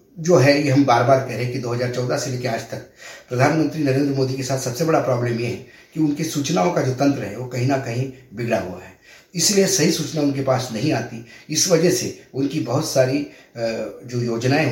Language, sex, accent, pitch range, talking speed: Hindi, male, native, 120-140 Hz, 215 wpm